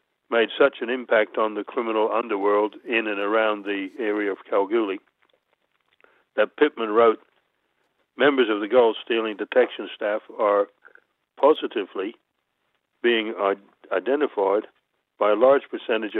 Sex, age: male, 60-79